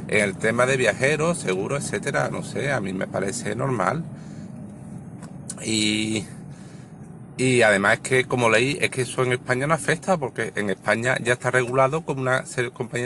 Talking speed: 170 wpm